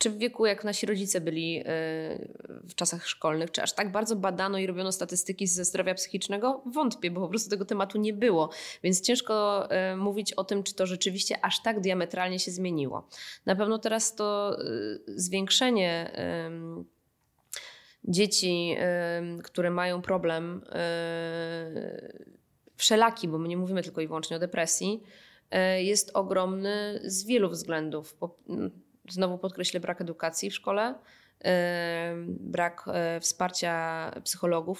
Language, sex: Polish, female